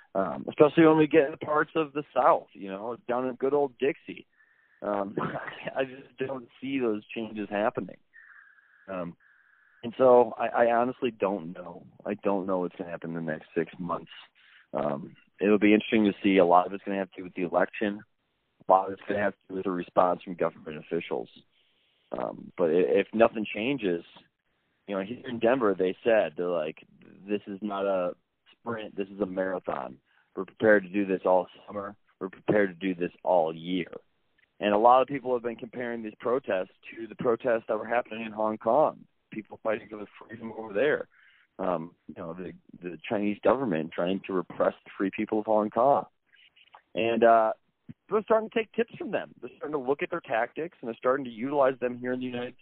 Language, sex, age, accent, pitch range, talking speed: English, male, 30-49, American, 95-130 Hz, 210 wpm